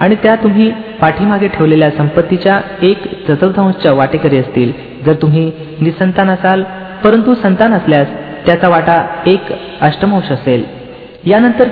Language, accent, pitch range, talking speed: Marathi, native, 150-200 Hz, 120 wpm